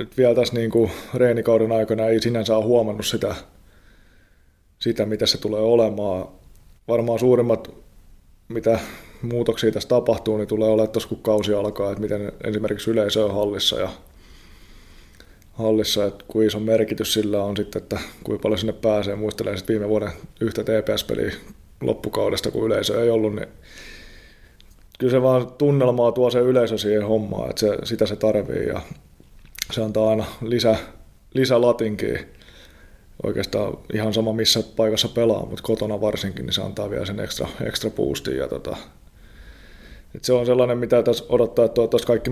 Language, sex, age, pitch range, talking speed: Finnish, male, 20-39, 100-115 Hz, 150 wpm